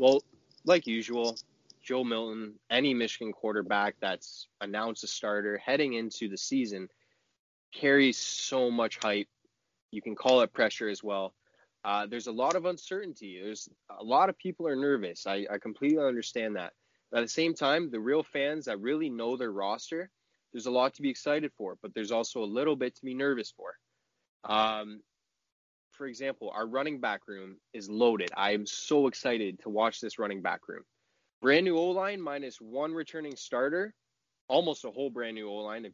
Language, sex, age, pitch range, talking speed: English, male, 20-39, 105-140 Hz, 180 wpm